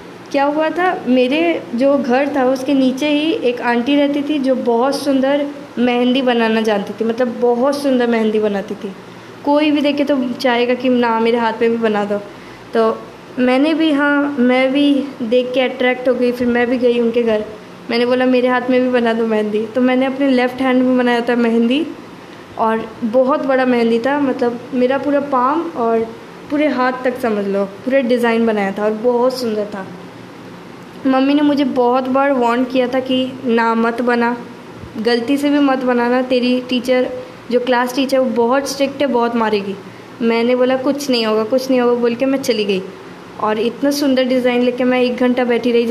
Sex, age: female, 20-39